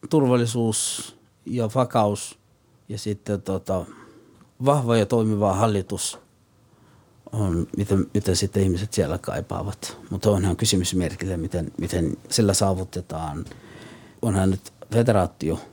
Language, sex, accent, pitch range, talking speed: Finnish, male, native, 95-115 Hz, 105 wpm